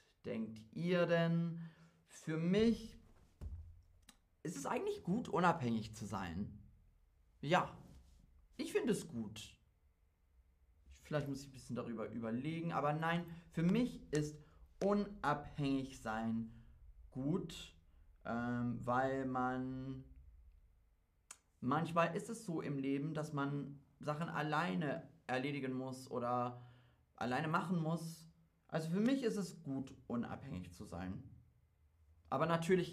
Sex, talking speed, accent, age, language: male, 115 wpm, German, 30-49, German